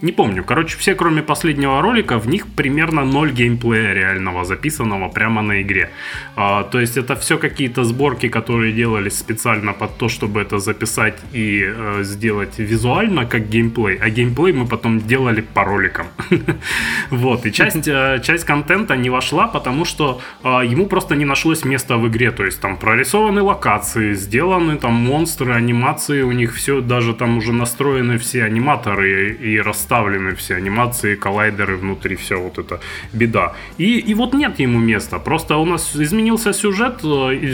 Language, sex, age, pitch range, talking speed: Russian, male, 20-39, 110-150 Hz, 160 wpm